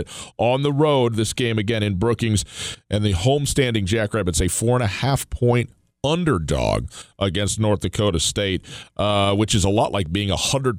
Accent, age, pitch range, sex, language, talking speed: American, 40-59, 95-120 Hz, male, English, 180 wpm